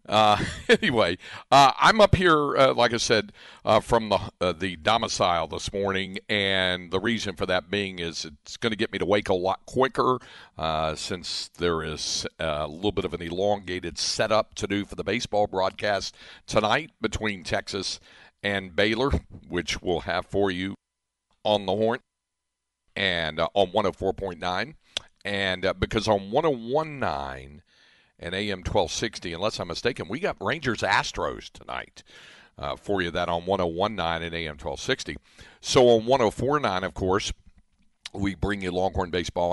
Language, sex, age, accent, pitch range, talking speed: English, male, 50-69, American, 90-105 Hz, 160 wpm